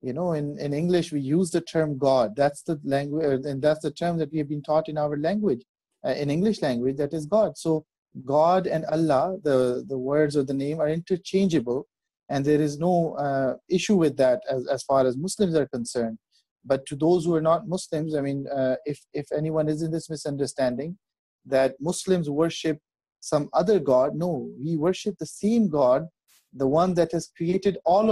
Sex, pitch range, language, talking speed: male, 140-175 Hz, English, 200 wpm